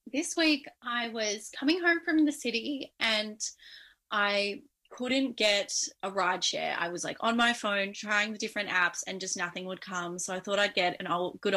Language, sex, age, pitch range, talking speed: English, female, 10-29, 190-250 Hz, 200 wpm